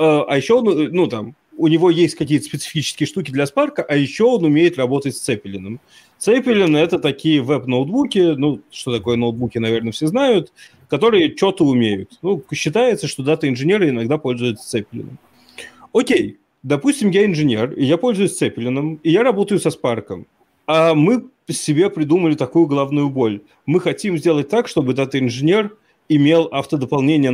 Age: 30-49